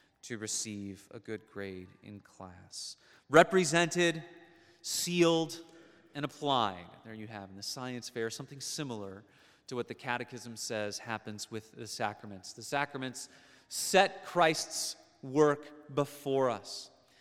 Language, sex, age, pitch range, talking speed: English, male, 30-49, 110-155 Hz, 125 wpm